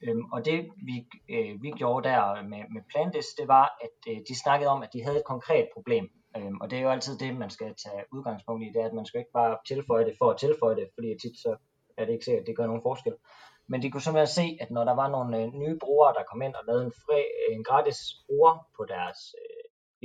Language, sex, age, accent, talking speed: Danish, male, 20-39, native, 265 wpm